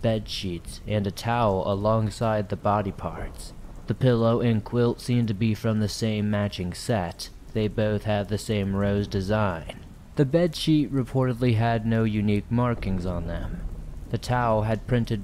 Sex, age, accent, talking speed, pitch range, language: male, 20-39, American, 160 wpm, 95-115 Hz, English